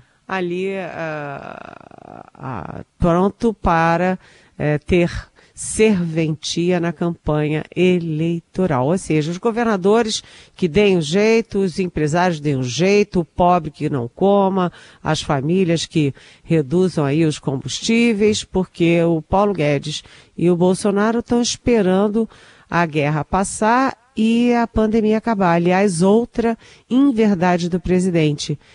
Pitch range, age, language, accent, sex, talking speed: 160-205 Hz, 50-69, Portuguese, Brazilian, female, 125 wpm